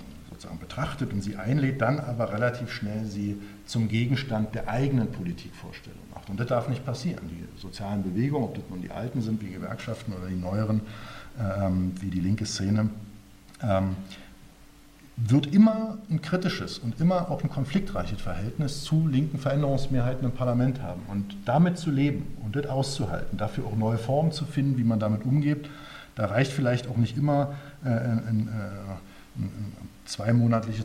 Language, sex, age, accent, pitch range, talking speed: German, male, 50-69, German, 110-145 Hz, 160 wpm